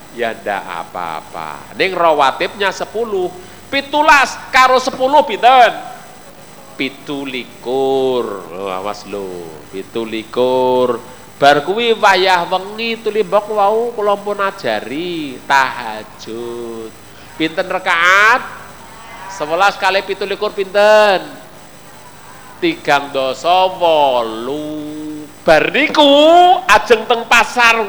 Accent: native